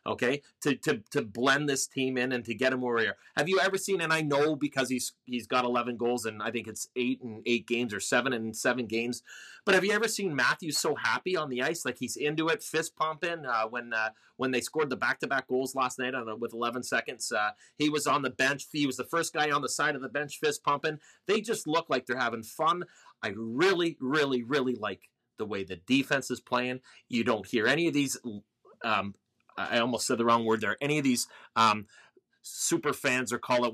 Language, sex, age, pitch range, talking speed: English, male, 30-49, 120-150 Hz, 235 wpm